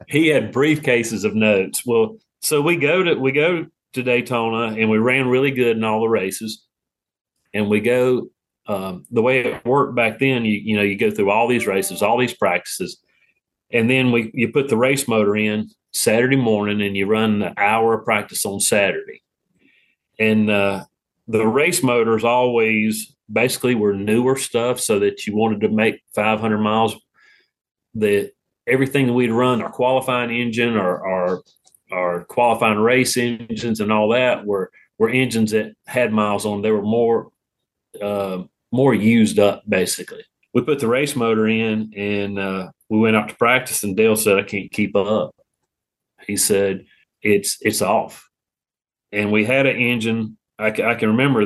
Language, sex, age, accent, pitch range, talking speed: English, male, 40-59, American, 105-125 Hz, 175 wpm